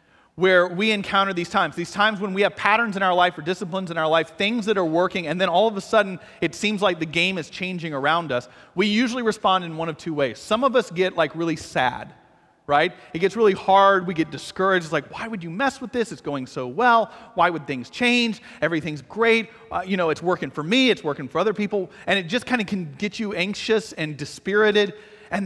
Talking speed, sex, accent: 245 wpm, male, American